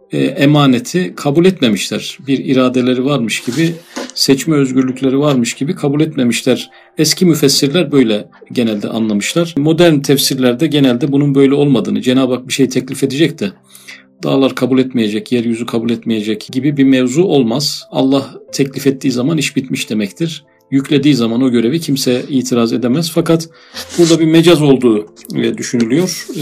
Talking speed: 140 wpm